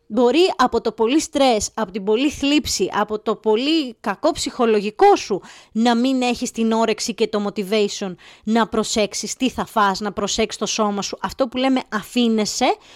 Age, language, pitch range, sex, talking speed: 20-39, Greek, 215-315 Hz, female, 170 wpm